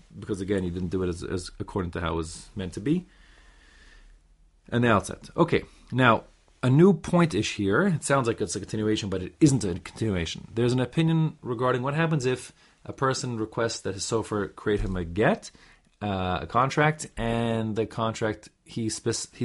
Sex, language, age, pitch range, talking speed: male, English, 30-49, 95-125 Hz, 190 wpm